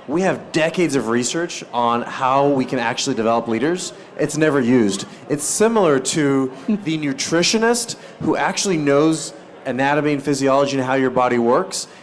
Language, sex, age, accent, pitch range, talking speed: English, male, 30-49, American, 140-190 Hz, 155 wpm